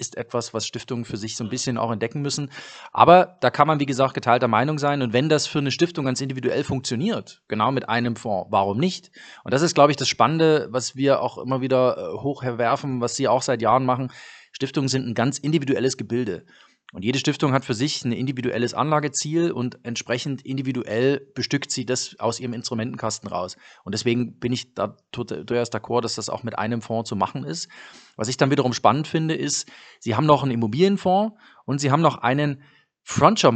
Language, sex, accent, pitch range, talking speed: German, male, German, 120-145 Hz, 205 wpm